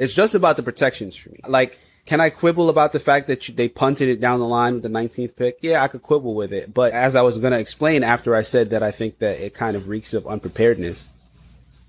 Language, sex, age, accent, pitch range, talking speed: English, male, 20-39, American, 110-140 Hz, 255 wpm